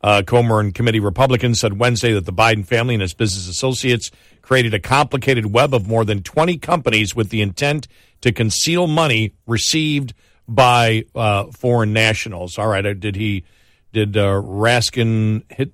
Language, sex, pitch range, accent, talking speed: English, male, 105-125 Hz, American, 165 wpm